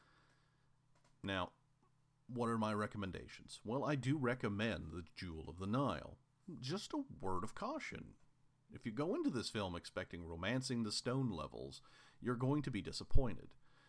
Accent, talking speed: American, 150 wpm